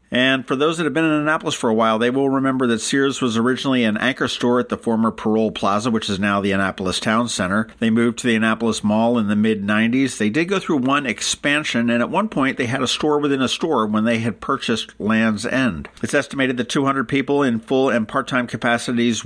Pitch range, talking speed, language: 110-135 Hz, 235 wpm, English